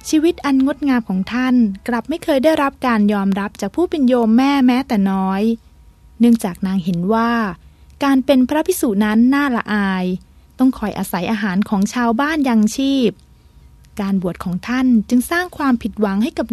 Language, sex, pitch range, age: Thai, female, 200-265 Hz, 20-39